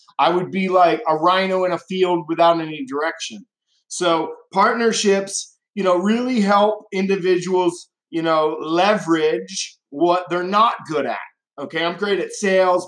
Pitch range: 170-205 Hz